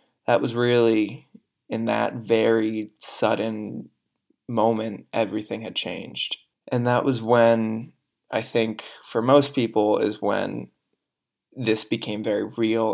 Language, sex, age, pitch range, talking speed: English, male, 20-39, 110-120 Hz, 120 wpm